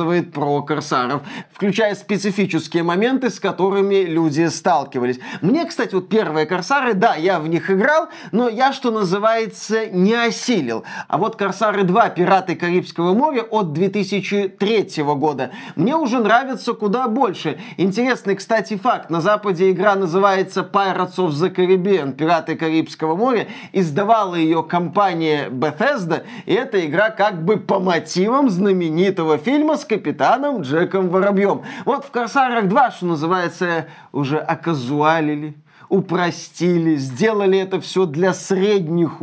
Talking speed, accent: 130 wpm, native